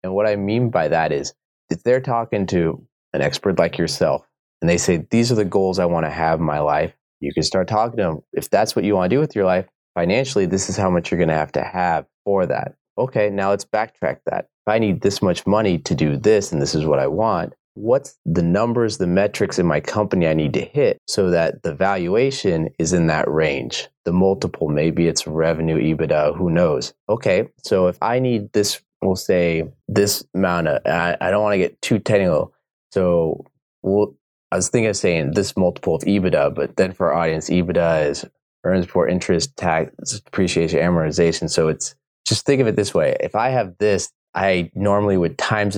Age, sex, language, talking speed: 30-49, male, English, 215 wpm